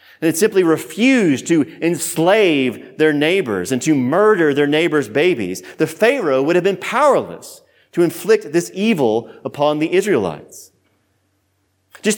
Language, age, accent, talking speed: English, 30-49, American, 140 wpm